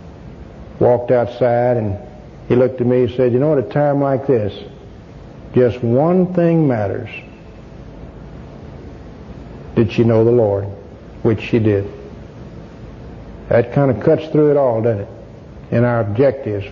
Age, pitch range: 60-79, 115-155 Hz